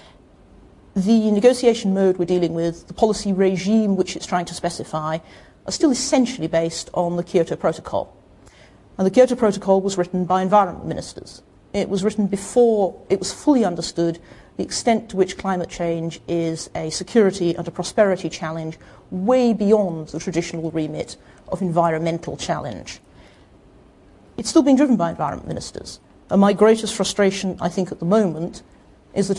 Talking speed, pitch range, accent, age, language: 160 wpm, 170-205 Hz, British, 40-59, English